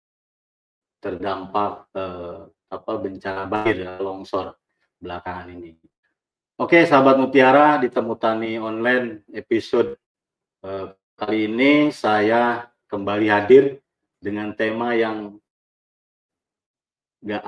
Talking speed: 80 wpm